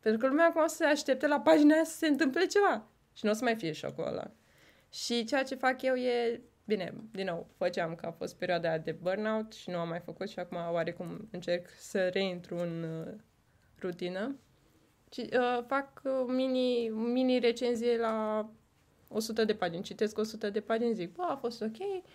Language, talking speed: Romanian, 190 wpm